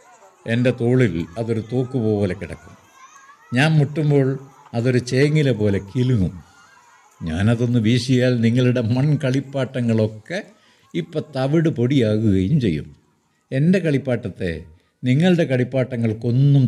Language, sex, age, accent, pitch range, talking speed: Malayalam, male, 60-79, native, 100-135 Hz, 85 wpm